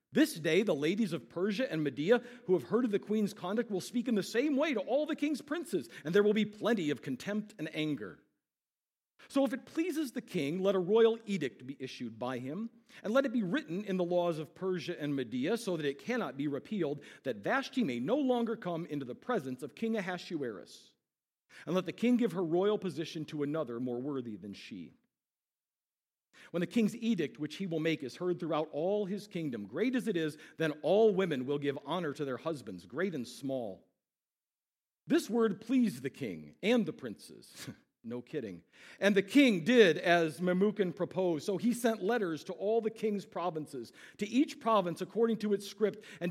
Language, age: English, 50-69